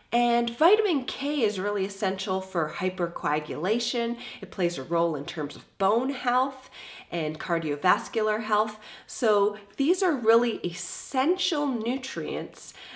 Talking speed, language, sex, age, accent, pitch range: 120 wpm, English, female, 30-49, American, 190-275 Hz